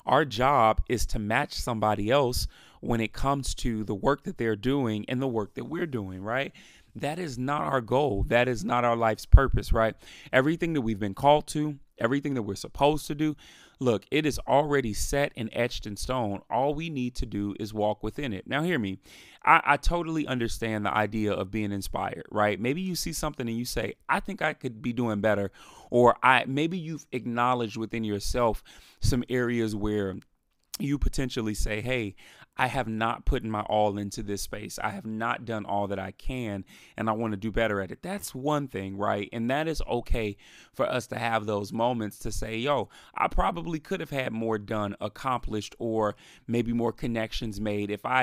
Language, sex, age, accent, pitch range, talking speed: English, male, 30-49, American, 105-130 Hz, 200 wpm